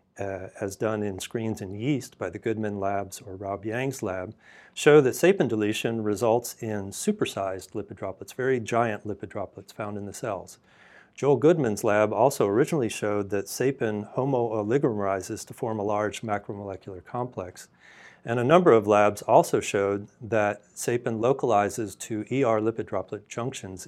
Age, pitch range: 40-59, 105-120 Hz